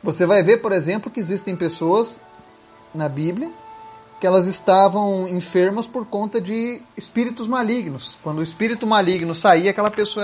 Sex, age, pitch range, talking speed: male, 30-49, 155-210 Hz, 150 wpm